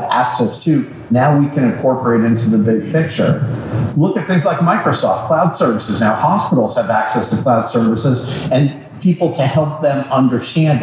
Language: English